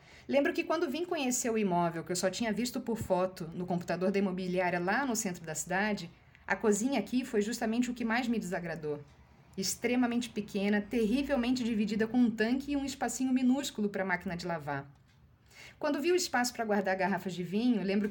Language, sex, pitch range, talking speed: Portuguese, female, 185-235 Hz, 195 wpm